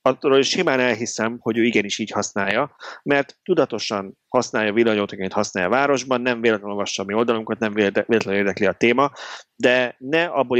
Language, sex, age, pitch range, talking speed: Hungarian, male, 30-49, 100-125 Hz, 180 wpm